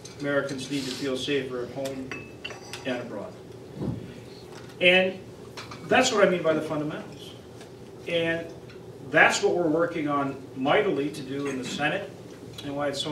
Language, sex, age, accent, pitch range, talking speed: English, male, 40-59, American, 130-170 Hz, 150 wpm